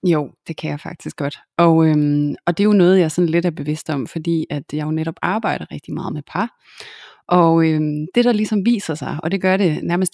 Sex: female